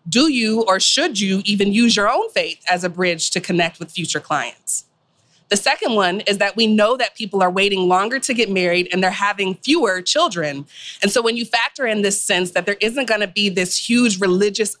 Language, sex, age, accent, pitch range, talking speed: English, female, 30-49, American, 180-225 Hz, 220 wpm